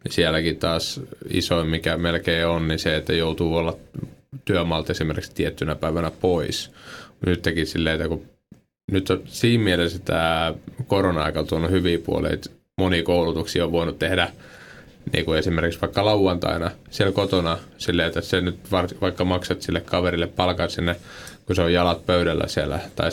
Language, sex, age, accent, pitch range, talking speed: Finnish, male, 20-39, native, 80-90 Hz, 145 wpm